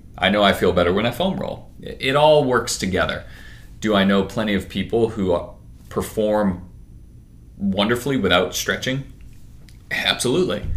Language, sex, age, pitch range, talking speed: English, male, 30-49, 90-110 Hz, 140 wpm